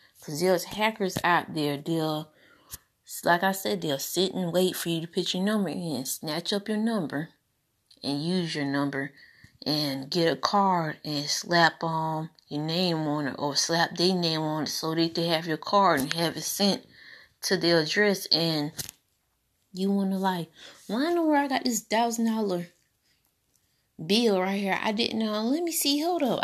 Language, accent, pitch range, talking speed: English, American, 155-200 Hz, 190 wpm